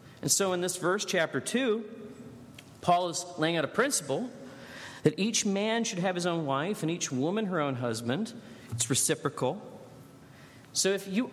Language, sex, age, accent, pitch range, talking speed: English, male, 40-59, American, 130-210 Hz, 170 wpm